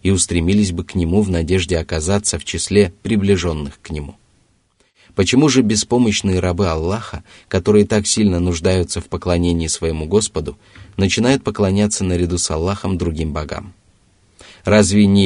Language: Russian